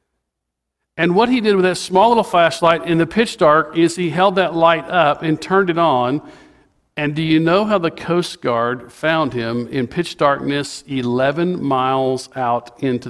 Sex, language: male, English